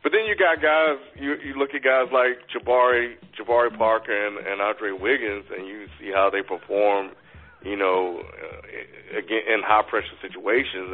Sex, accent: male, American